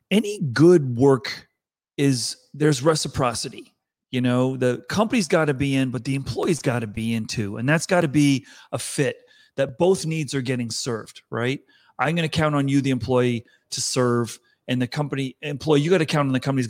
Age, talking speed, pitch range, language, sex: 30-49, 205 wpm, 125-150 Hz, English, male